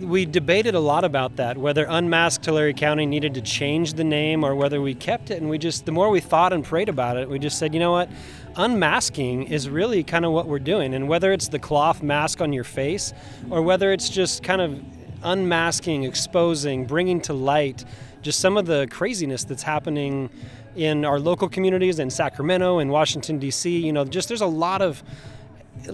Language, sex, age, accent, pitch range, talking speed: English, male, 30-49, American, 135-170 Hz, 205 wpm